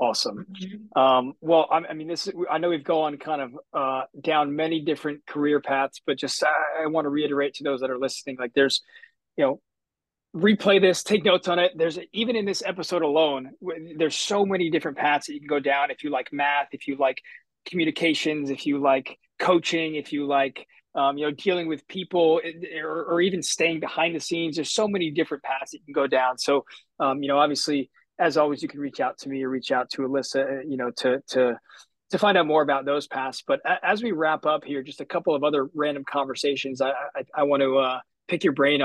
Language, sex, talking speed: English, male, 225 wpm